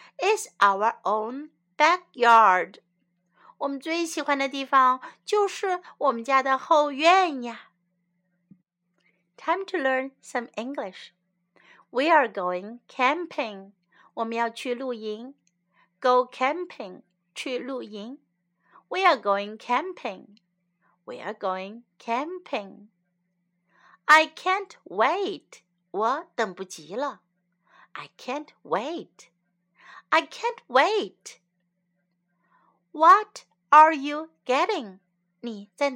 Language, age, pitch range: Chinese, 60-79, 180-295 Hz